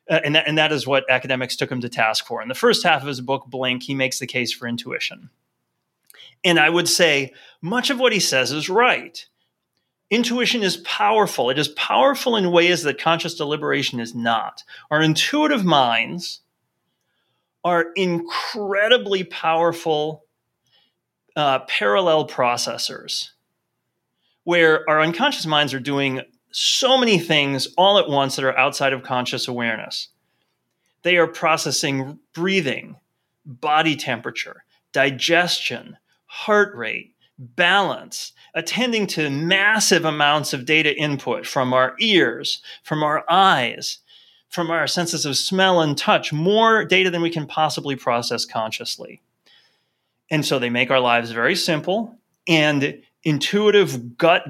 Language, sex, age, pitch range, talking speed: English, male, 30-49, 135-180 Hz, 140 wpm